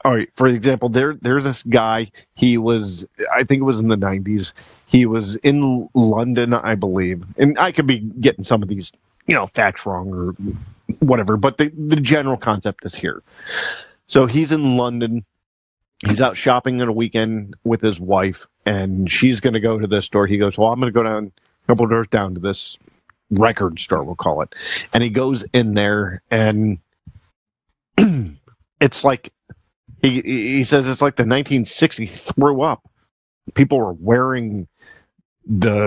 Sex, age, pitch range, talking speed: male, 40-59, 105-135 Hz, 170 wpm